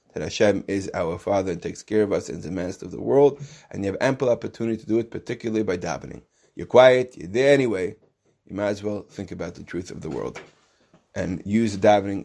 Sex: male